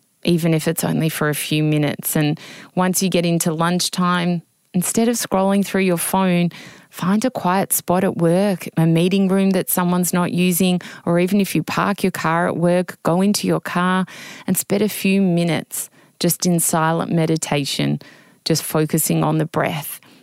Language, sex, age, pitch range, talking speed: English, female, 20-39, 155-180 Hz, 180 wpm